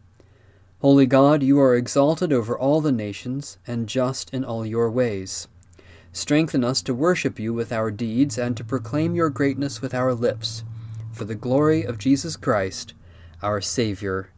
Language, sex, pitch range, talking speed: English, male, 95-135 Hz, 165 wpm